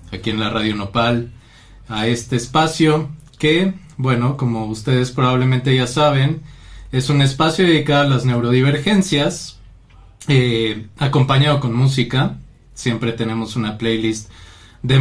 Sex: male